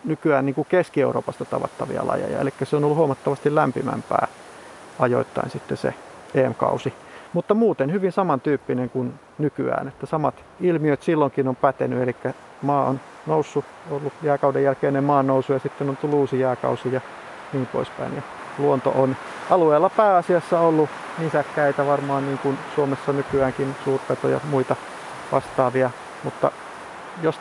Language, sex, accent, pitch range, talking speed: Finnish, male, native, 135-155 Hz, 135 wpm